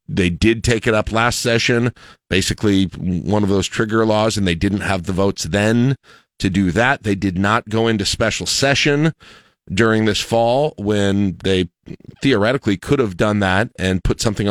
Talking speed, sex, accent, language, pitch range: 180 wpm, male, American, English, 90-105 Hz